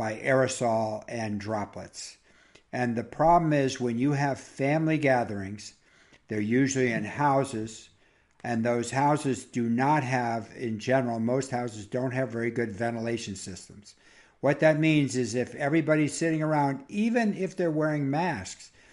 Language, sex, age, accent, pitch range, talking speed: English, male, 60-79, American, 115-150 Hz, 145 wpm